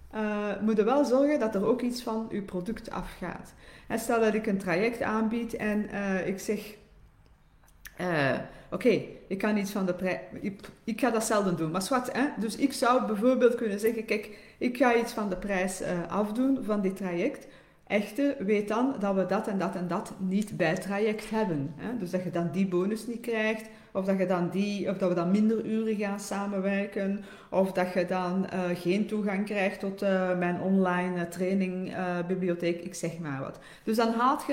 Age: 40-59